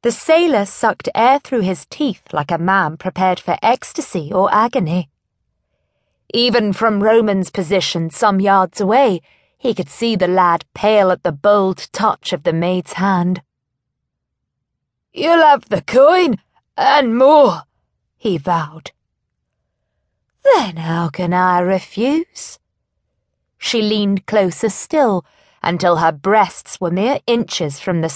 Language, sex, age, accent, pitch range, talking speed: English, female, 20-39, British, 175-235 Hz, 130 wpm